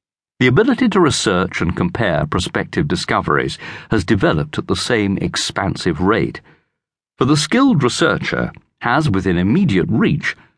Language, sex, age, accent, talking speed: English, male, 50-69, British, 130 wpm